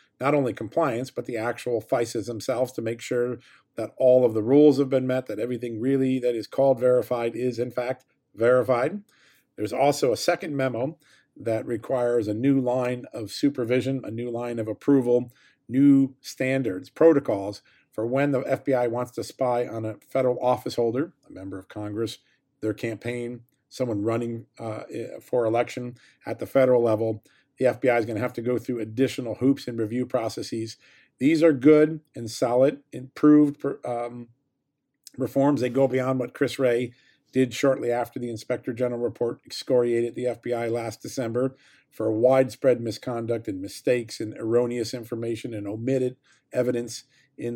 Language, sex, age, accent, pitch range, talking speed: English, male, 40-59, American, 120-135 Hz, 165 wpm